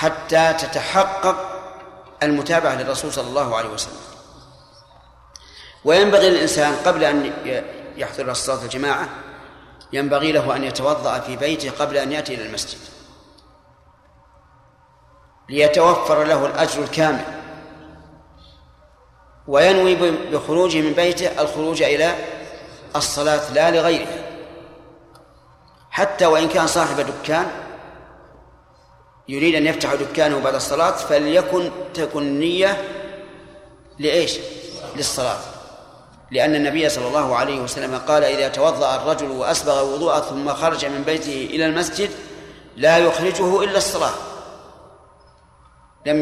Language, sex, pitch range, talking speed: Arabic, male, 140-175 Hz, 100 wpm